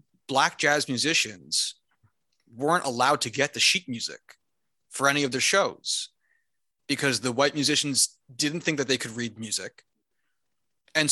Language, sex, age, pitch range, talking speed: English, male, 30-49, 125-160 Hz, 145 wpm